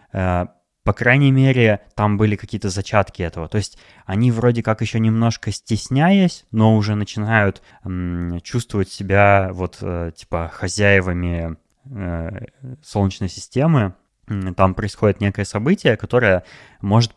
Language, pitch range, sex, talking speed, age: Russian, 90-110 Hz, male, 110 wpm, 20-39